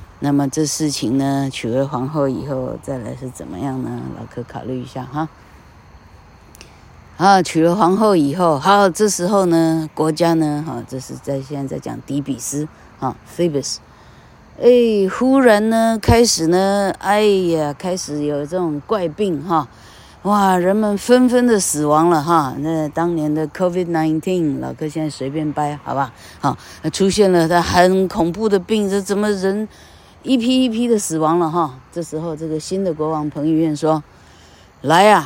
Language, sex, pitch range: Chinese, female, 140-195 Hz